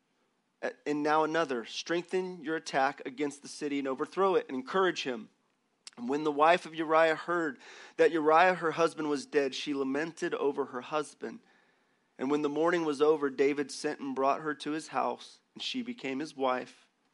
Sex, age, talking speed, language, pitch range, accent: male, 30-49, 180 wpm, English, 145-200 Hz, American